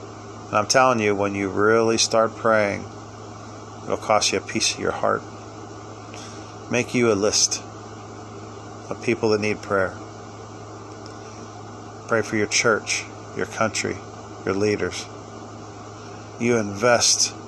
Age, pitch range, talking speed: 40-59, 105-110 Hz, 125 wpm